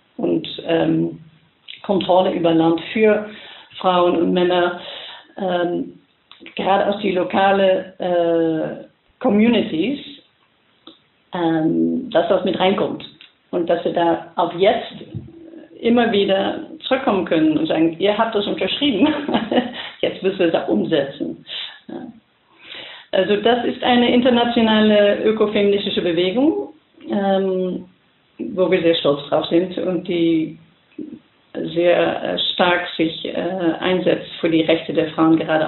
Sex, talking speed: female, 120 wpm